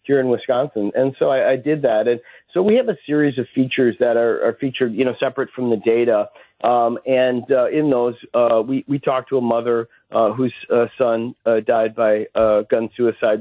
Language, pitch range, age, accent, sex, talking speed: English, 115-130 Hz, 50-69, American, male, 220 wpm